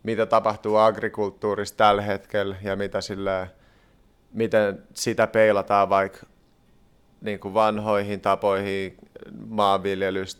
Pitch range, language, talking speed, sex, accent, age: 100-110 Hz, Finnish, 90 wpm, male, native, 30-49